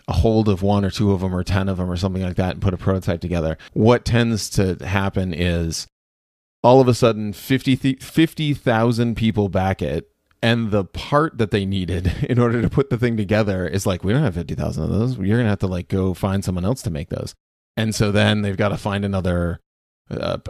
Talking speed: 230 wpm